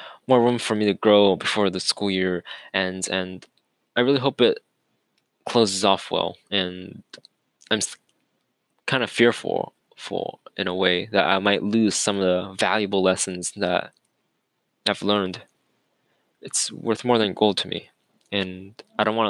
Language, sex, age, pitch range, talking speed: English, male, 20-39, 95-110 Hz, 155 wpm